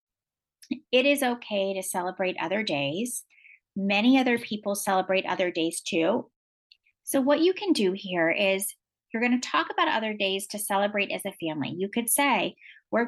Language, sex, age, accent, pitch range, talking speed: English, female, 30-49, American, 195-265 Hz, 170 wpm